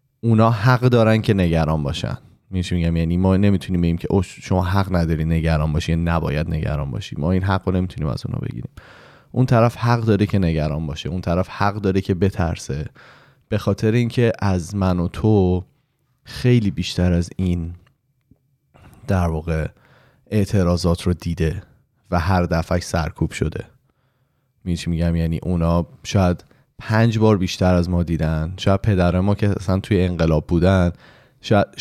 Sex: male